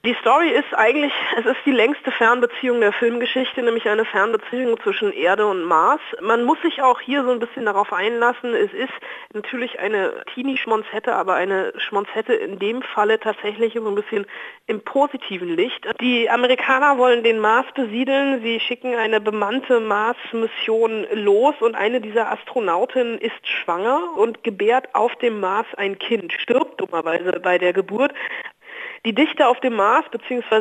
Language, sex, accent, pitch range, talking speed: German, female, German, 210-255 Hz, 160 wpm